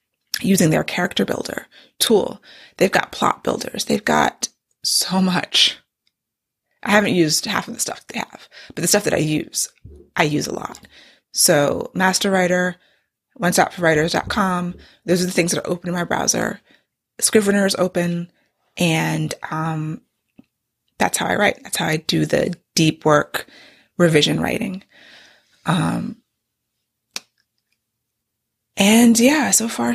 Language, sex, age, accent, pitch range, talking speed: English, female, 20-39, American, 160-210 Hz, 145 wpm